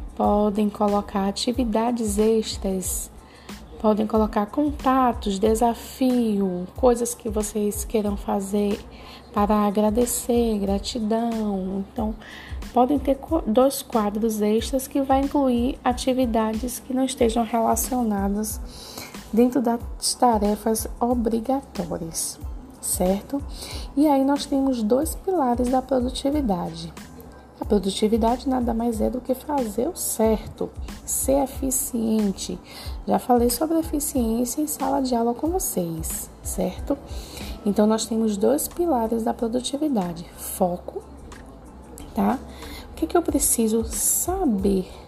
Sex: female